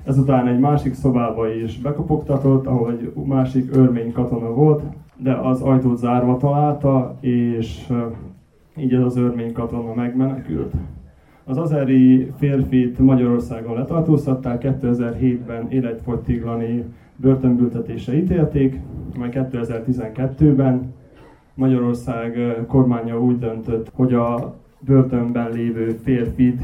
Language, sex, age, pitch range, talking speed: Hungarian, male, 20-39, 120-135 Hz, 100 wpm